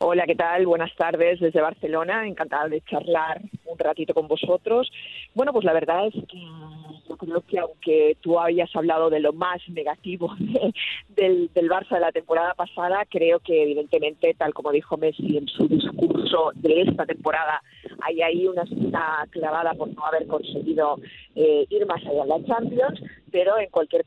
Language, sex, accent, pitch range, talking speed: Spanish, female, Spanish, 155-200 Hz, 175 wpm